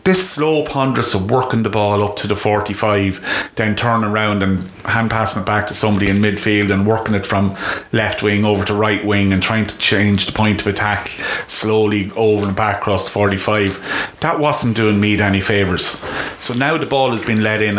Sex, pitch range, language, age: male, 100-115 Hz, English, 30-49